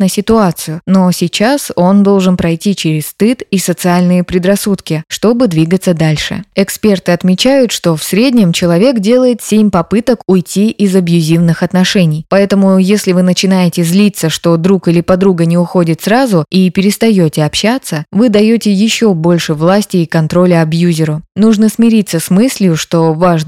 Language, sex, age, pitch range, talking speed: Russian, female, 20-39, 170-210 Hz, 145 wpm